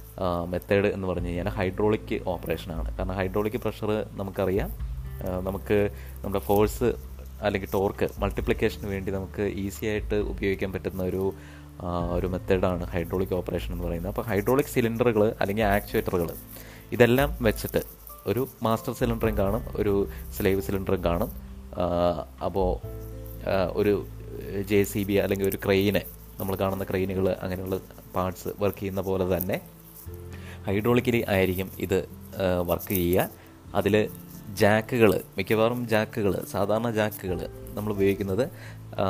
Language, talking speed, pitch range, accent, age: Malayalam, 110 wpm, 95-110 Hz, native, 20-39